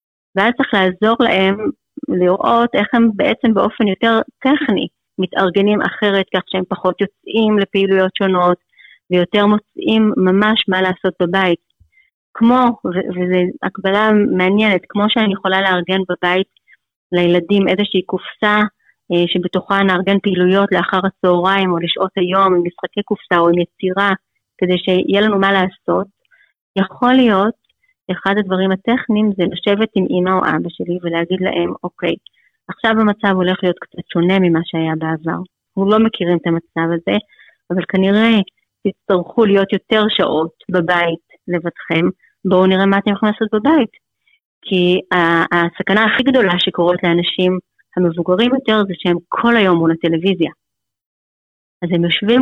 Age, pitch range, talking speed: 30-49, 180-210 Hz, 135 wpm